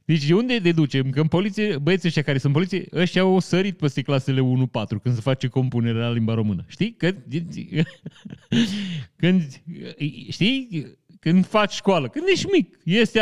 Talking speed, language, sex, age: 170 wpm, Romanian, male, 30-49